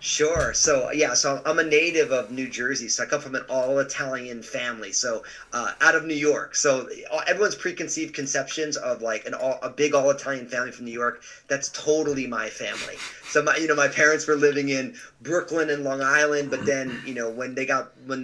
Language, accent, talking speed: English, American, 205 wpm